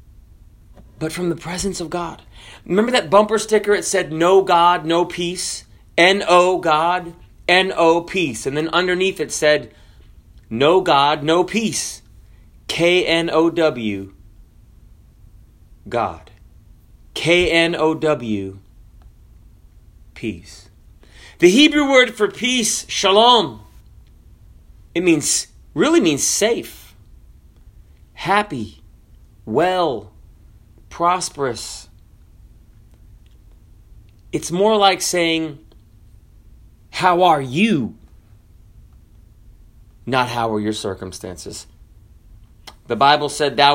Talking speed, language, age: 85 wpm, English, 30-49